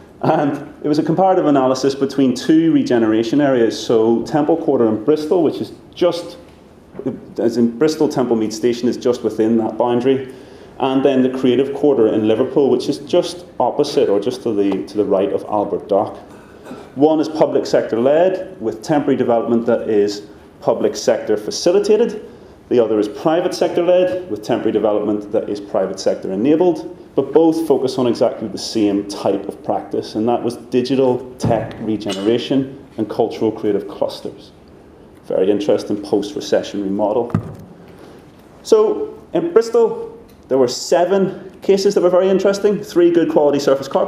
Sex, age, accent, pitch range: male, 30-49, British, 115-170 Hz